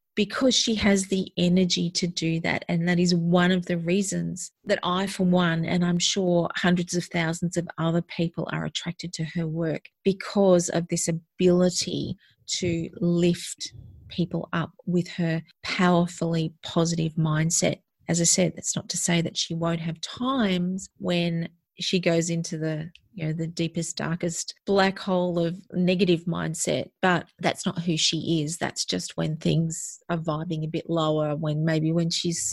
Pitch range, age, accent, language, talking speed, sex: 165-185 Hz, 30-49, Australian, English, 170 wpm, female